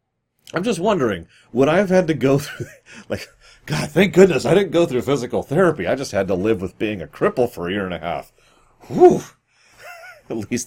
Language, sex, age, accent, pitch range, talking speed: English, male, 30-49, American, 90-130 Hz, 215 wpm